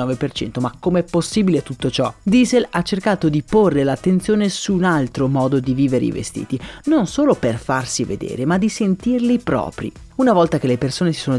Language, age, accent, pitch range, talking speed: Italian, 30-49, native, 130-200 Hz, 190 wpm